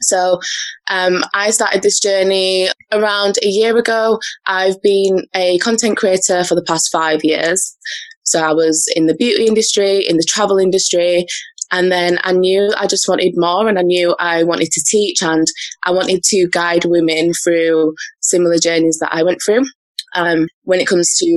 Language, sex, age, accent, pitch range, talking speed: English, female, 20-39, British, 170-200 Hz, 180 wpm